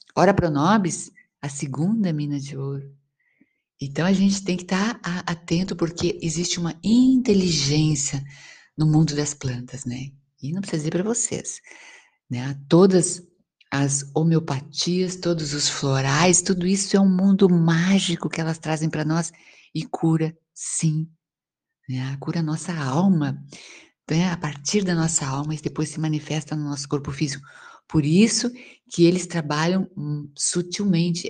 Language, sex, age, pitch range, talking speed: Portuguese, female, 50-69, 145-180 Hz, 145 wpm